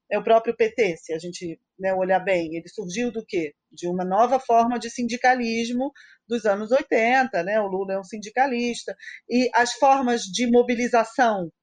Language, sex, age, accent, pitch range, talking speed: Portuguese, female, 40-59, Brazilian, 220-315 Hz, 175 wpm